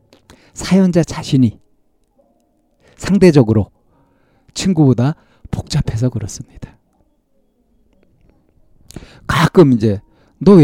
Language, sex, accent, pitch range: Korean, male, native, 115-155 Hz